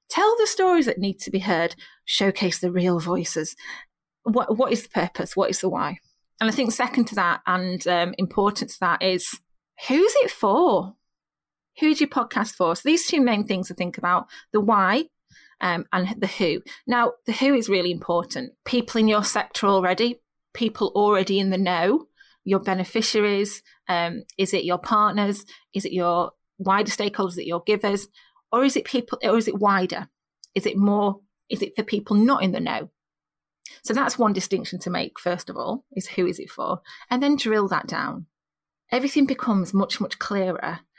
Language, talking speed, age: English, 190 wpm, 30-49